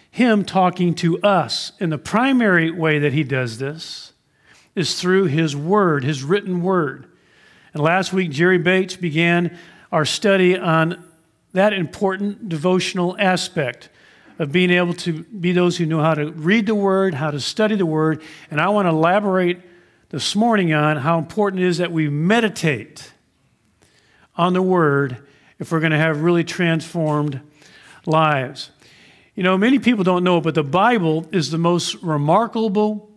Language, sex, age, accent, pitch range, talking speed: English, male, 50-69, American, 155-190 Hz, 165 wpm